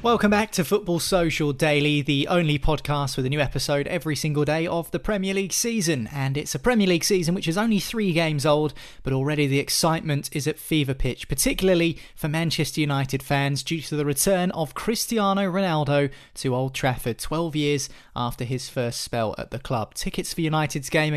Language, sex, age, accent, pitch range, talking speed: English, male, 20-39, British, 140-180 Hz, 195 wpm